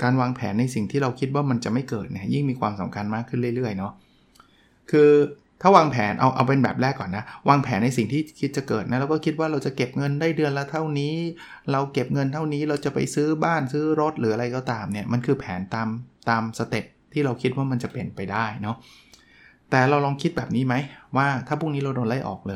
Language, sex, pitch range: Thai, male, 110-140 Hz